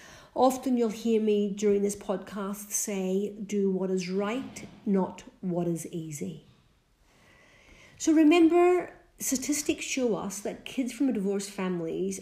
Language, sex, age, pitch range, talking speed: English, female, 50-69, 185-225 Hz, 130 wpm